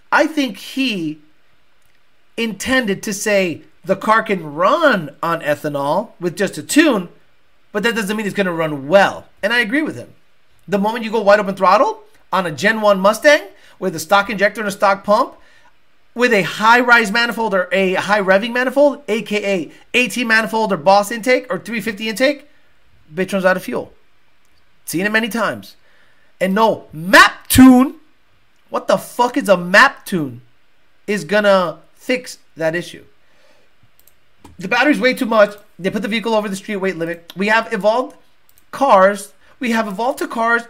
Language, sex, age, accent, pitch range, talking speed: English, male, 30-49, American, 185-235 Hz, 170 wpm